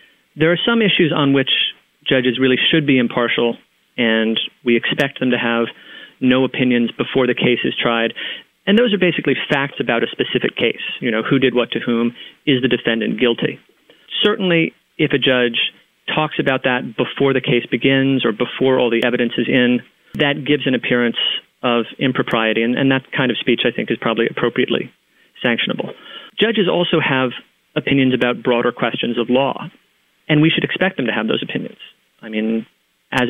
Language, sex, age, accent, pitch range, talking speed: English, male, 30-49, American, 120-140 Hz, 180 wpm